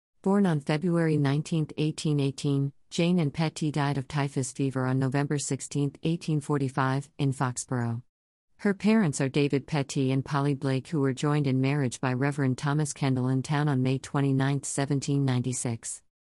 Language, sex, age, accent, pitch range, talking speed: English, female, 50-69, American, 130-155 Hz, 150 wpm